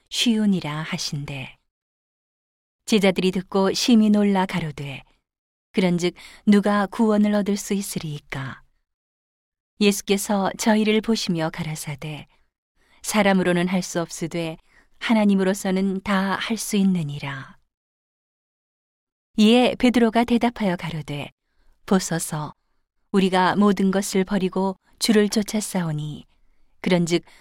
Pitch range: 160-205 Hz